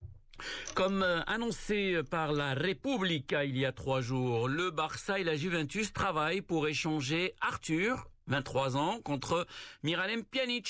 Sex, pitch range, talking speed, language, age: male, 120-160 Hz, 135 wpm, Arabic, 60-79